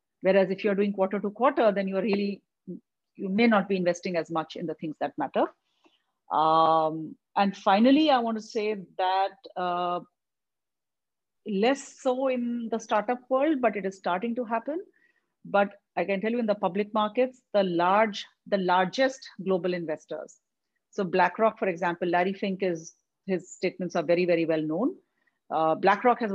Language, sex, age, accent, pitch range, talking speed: English, female, 40-59, Indian, 175-215 Hz, 170 wpm